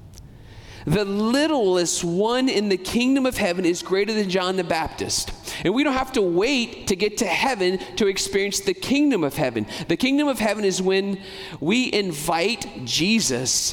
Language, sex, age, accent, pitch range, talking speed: English, male, 40-59, American, 130-200 Hz, 170 wpm